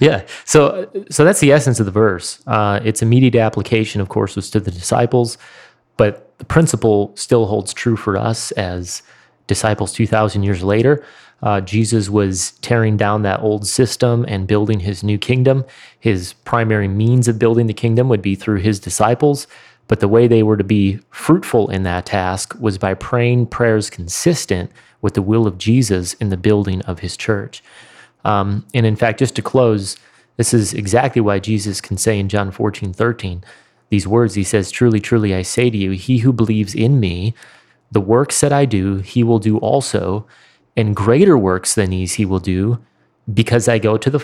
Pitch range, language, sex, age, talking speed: 100-120 Hz, English, male, 30-49, 190 wpm